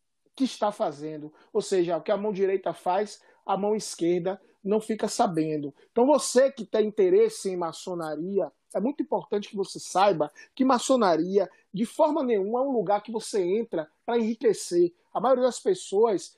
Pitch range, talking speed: 190-240 Hz, 170 wpm